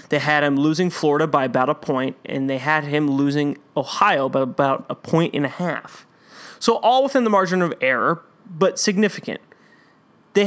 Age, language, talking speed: 20-39, English, 185 wpm